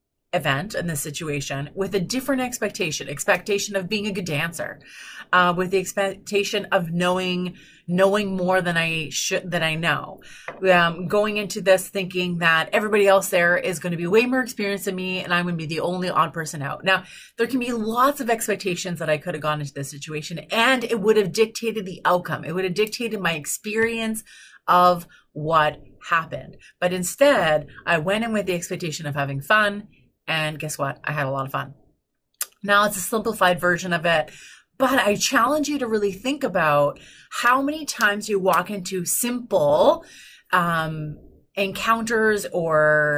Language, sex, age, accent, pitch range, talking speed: English, female, 30-49, American, 165-215 Hz, 180 wpm